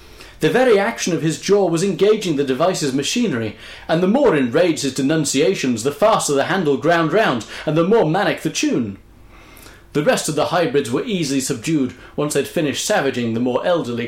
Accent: British